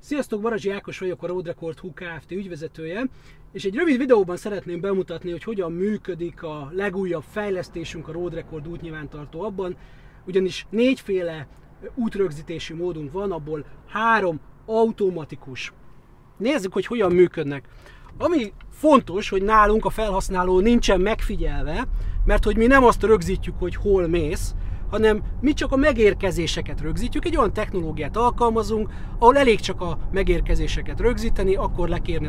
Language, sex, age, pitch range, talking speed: Hungarian, male, 30-49, 165-210 Hz, 135 wpm